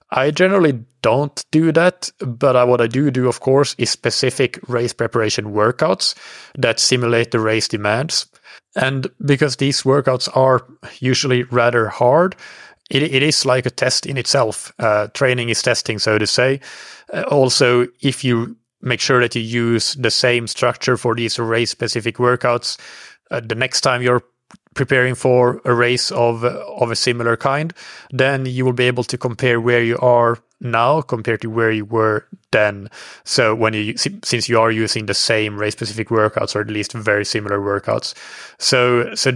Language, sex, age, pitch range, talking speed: English, male, 30-49, 110-130 Hz, 170 wpm